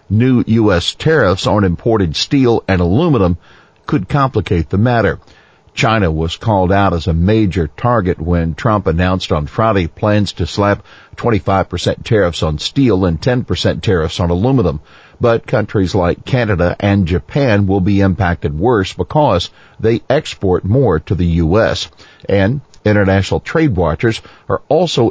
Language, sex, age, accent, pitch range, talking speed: English, male, 50-69, American, 90-115 Hz, 145 wpm